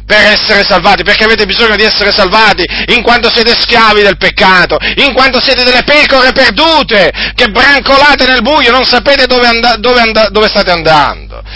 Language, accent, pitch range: Italian, native, 205-250 Hz